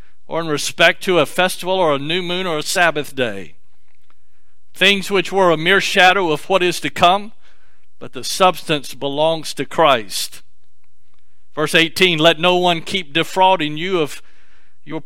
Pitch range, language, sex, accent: 130-180 Hz, English, male, American